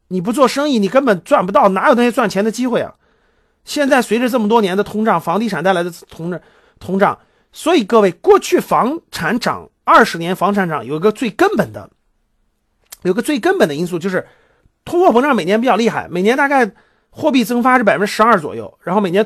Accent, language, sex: native, Chinese, male